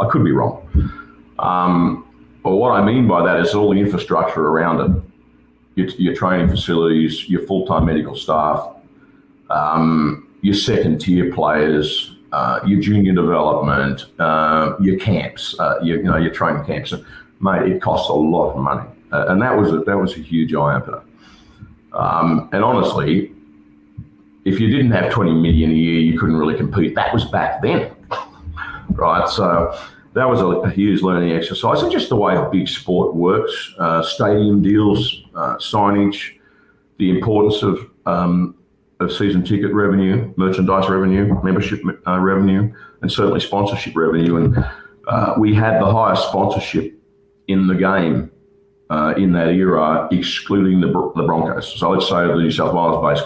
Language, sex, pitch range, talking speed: English, male, 80-100 Hz, 160 wpm